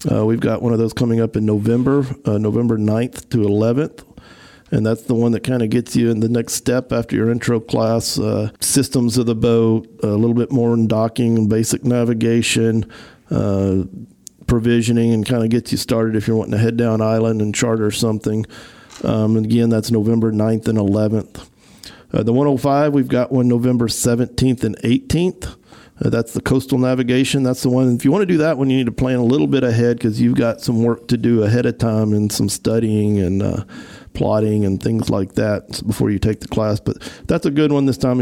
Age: 50-69